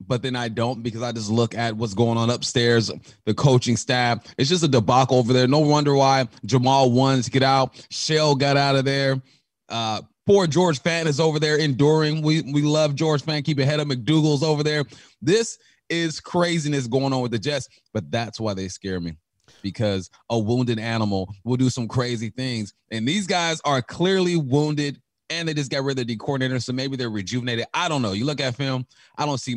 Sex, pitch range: male, 120-150 Hz